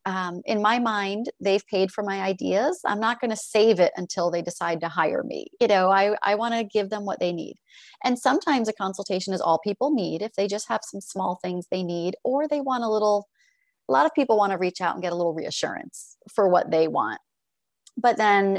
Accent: American